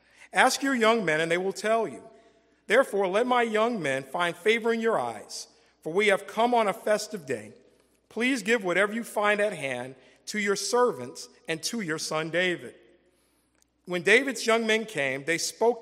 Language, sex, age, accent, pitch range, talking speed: English, male, 50-69, American, 165-225 Hz, 185 wpm